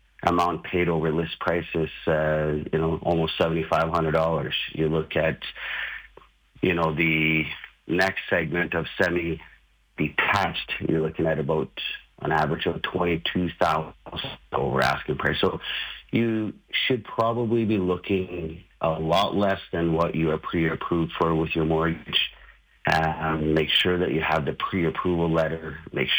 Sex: male